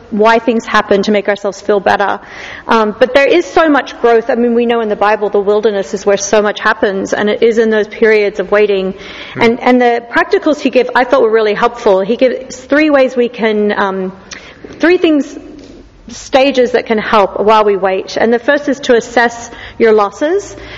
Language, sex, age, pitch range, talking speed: English, female, 40-59, 210-250 Hz, 210 wpm